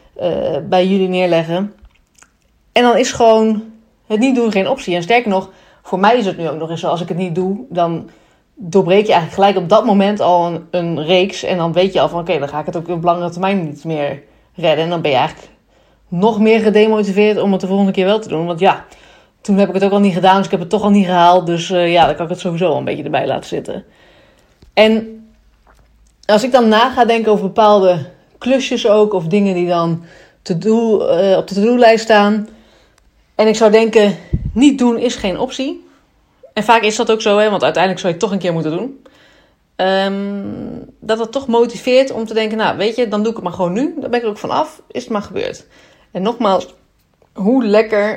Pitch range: 175-220 Hz